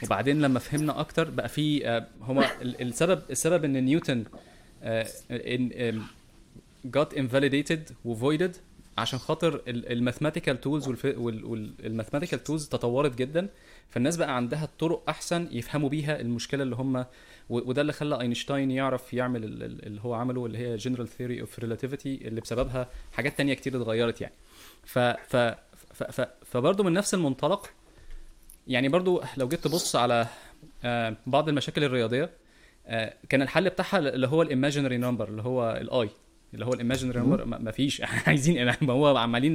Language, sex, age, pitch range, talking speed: Arabic, male, 20-39, 120-150 Hz, 140 wpm